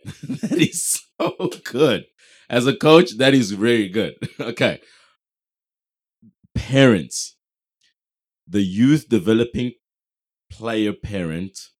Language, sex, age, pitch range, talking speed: English, male, 30-49, 85-110 Hz, 90 wpm